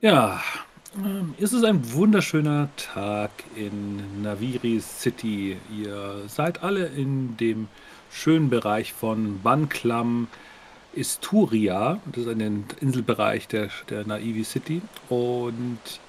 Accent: German